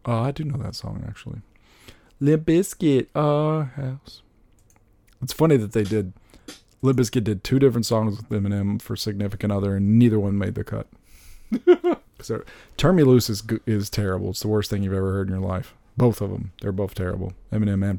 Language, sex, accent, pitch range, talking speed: English, male, American, 100-120 Hz, 195 wpm